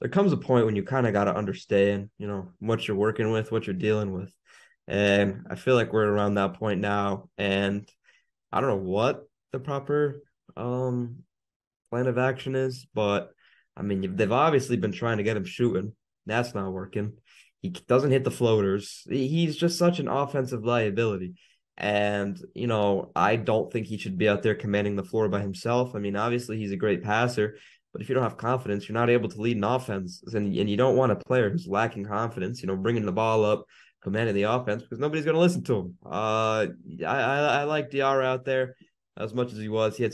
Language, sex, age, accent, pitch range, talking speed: English, male, 20-39, American, 100-125 Hz, 215 wpm